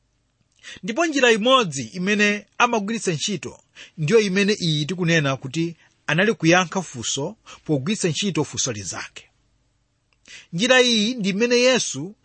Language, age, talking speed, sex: English, 30-49, 115 wpm, male